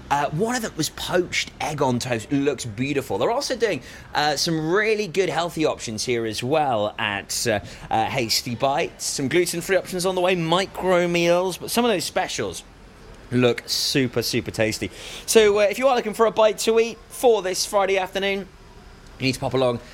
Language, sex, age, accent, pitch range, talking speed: English, male, 30-49, British, 125-185 Hz, 200 wpm